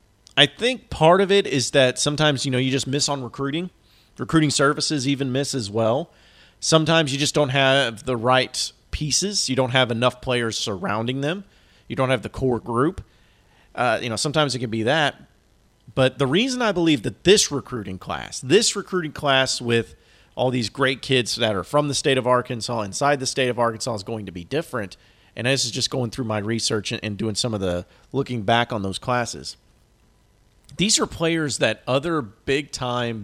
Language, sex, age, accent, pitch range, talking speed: English, male, 40-59, American, 110-145 Hz, 195 wpm